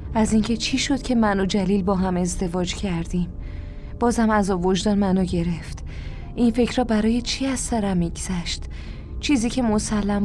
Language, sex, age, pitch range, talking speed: Persian, female, 20-39, 190-230 Hz, 165 wpm